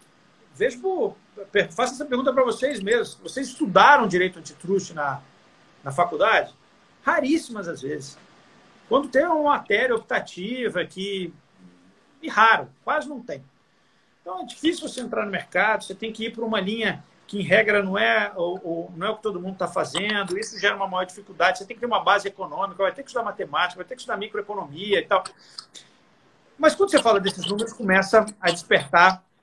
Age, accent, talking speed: 50-69, Brazilian, 185 wpm